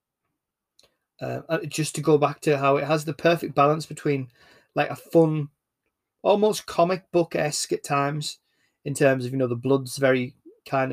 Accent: British